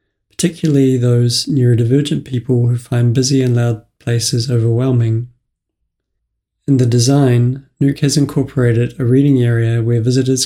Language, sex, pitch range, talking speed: English, male, 115-135 Hz, 125 wpm